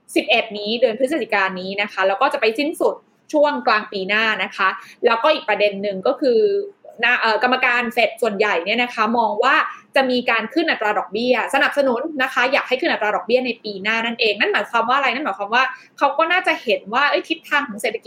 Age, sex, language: 20-39, female, Thai